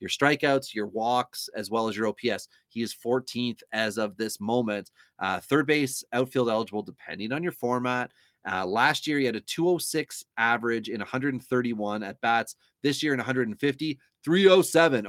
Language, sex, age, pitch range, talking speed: English, male, 30-49, 110-145 Hz, 165 wpm